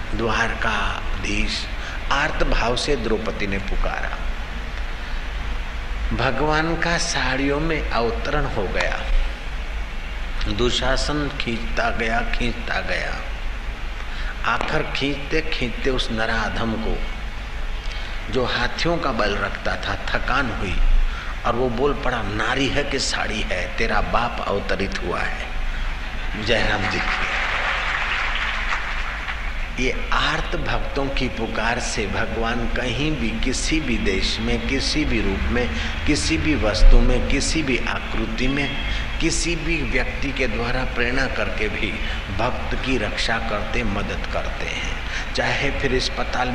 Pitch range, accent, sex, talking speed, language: 100-130 Hz, native, male, 120 wpm, Hindi